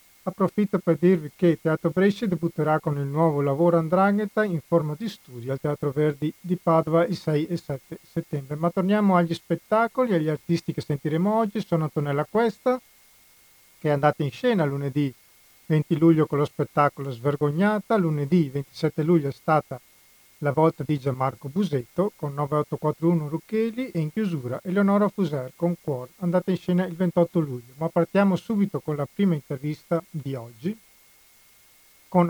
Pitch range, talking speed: 145-180 Hz, 160 wpm